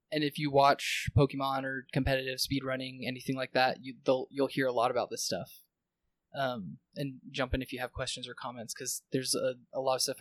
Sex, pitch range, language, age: male, 130-145 Hz, English, 20-39